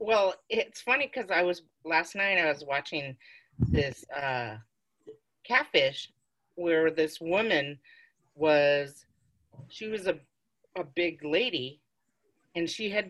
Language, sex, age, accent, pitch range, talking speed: English, female, 40-59, American, 145-190 Hz, 125 wpm